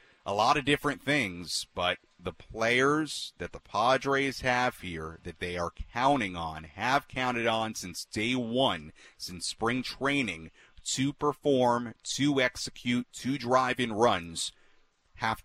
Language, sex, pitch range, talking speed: English, male, 110-145 Hz, 140 wpm